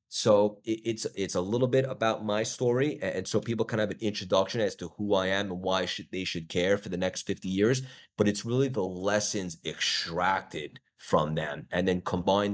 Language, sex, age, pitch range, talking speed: English, male, 30-49, 90-105 Hz, 205 wpm